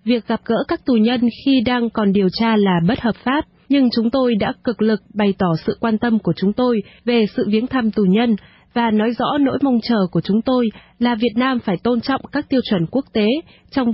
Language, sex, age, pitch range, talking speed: Vietnamese, female, 20-39, 210-250 Hz, 240 wpm